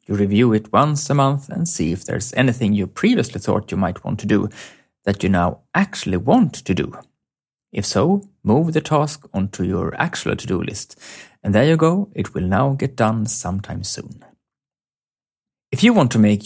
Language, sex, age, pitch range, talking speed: English, male, 30-49, 100-140 Hz, 190 wpm